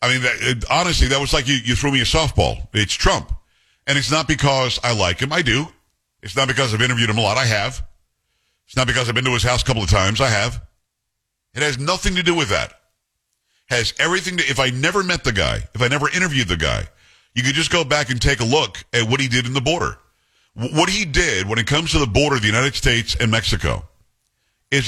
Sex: male